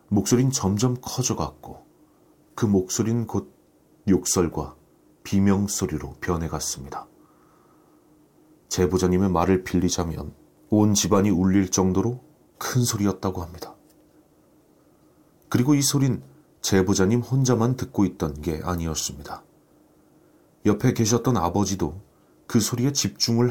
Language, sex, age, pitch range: Korean, male, 30-49, 90-110 Hz